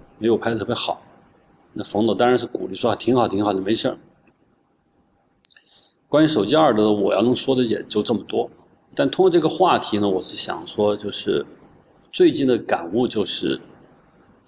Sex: male